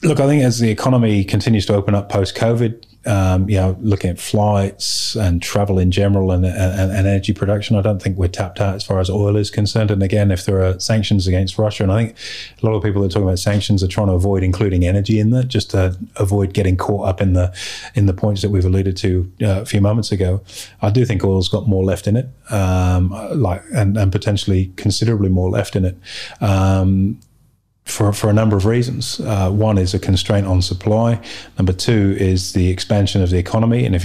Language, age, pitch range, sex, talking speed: English, 30-49, 95-105 Hz, male, 230 wpm